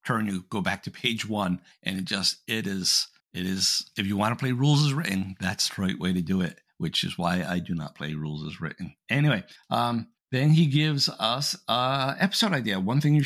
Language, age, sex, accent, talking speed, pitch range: English, 50-69, male, American, 230 wpm, 95-140 Hz